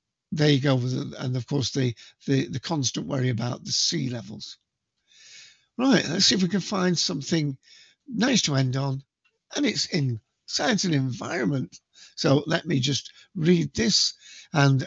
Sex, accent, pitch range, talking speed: male, British, 130-170 Hz, 155 wpm